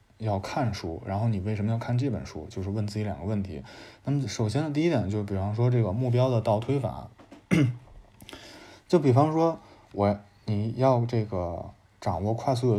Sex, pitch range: male, 100-120 Hz